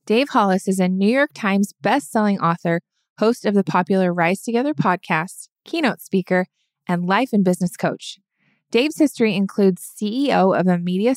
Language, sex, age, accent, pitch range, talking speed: English, female, 20-39, American, 180-220 Hz, 160 wpm